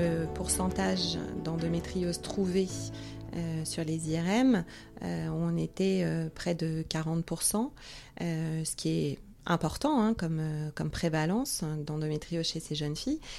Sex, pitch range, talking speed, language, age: female, 155-185 Hz, 135 wpm, English, 30-49